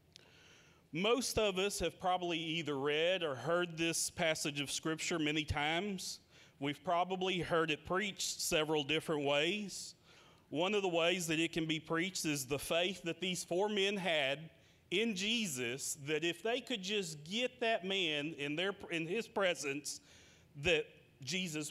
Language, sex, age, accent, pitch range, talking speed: English, male, 40-59, American, 155-195 Hz, 160 wpm